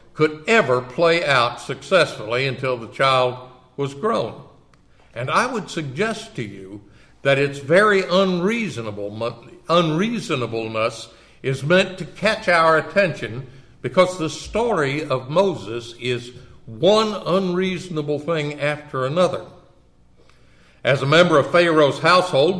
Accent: American